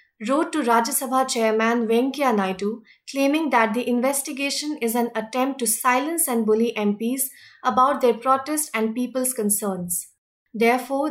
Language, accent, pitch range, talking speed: English, Indian, 225-275 Hz, 140 wpm